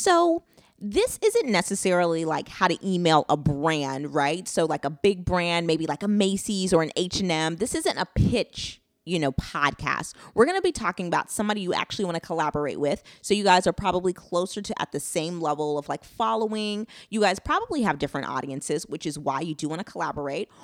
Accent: American